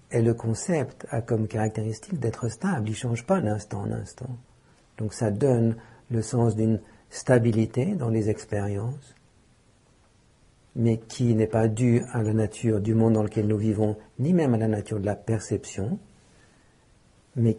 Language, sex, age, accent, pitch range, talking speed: English, male, 60-79, French, 110-120 Hz, 160 wpm